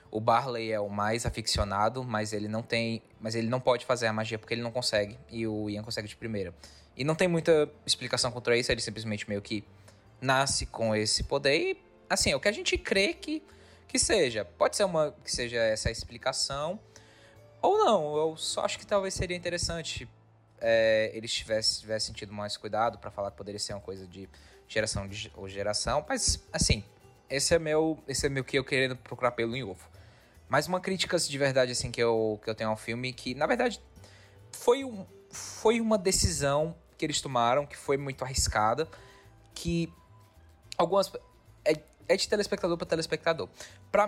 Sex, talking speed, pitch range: male, 190 wpm, 105-155 Hz